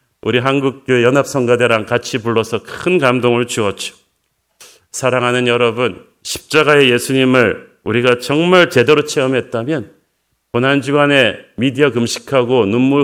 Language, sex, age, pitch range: Korean, male, 40-59, 115-140 Hz